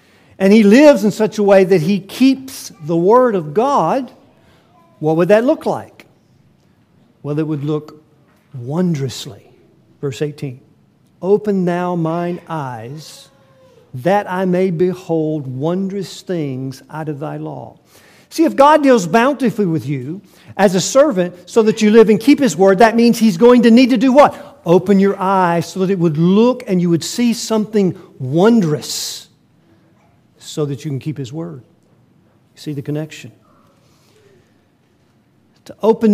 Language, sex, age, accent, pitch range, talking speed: English, male, 50-69, American, 160-215 Hz, 155 wpm